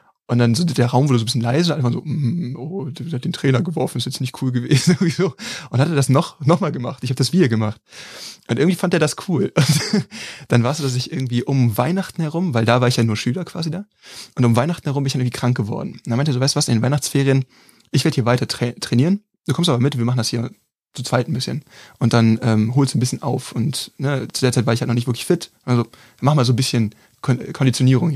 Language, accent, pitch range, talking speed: German, German, 120-145 Hz, 275 wpm